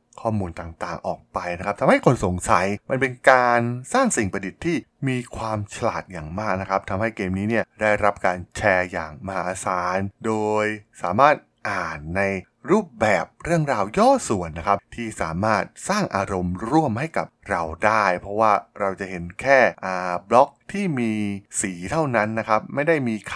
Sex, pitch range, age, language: male, 90-120 Hz, 20-39, Thai